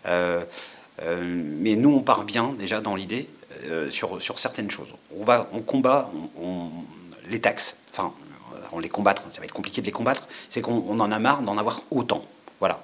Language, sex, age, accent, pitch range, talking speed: French, male, 40-59, French, 105-130 Hz, 205 wpm